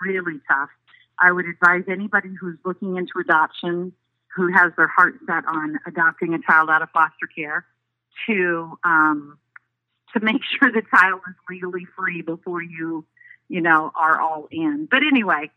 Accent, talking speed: American, 160 wpm